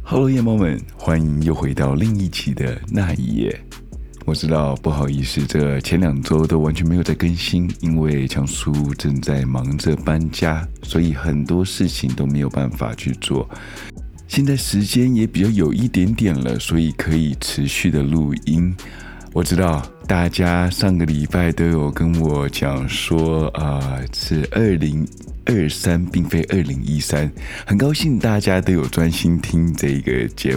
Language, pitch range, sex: Chinese, 70-90 Hz, male